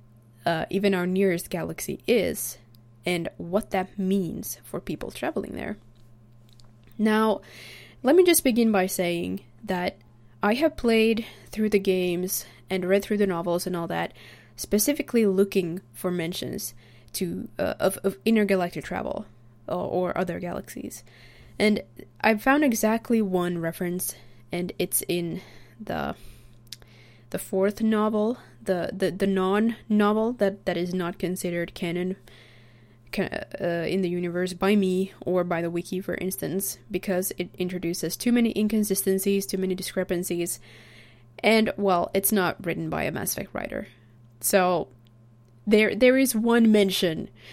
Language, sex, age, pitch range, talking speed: English, female, 20-39, 120-200 Hz, 140 wpm